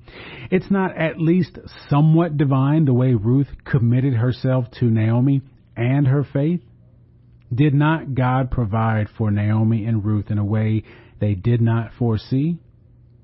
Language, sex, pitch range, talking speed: English, male, 115-140 Hz, 140 wpm